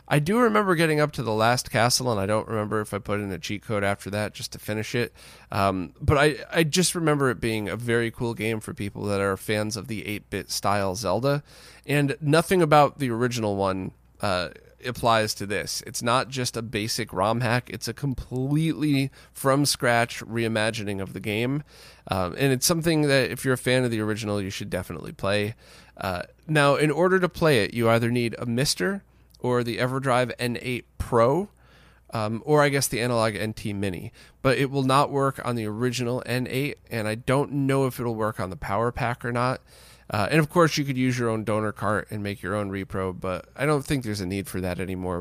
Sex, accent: male, American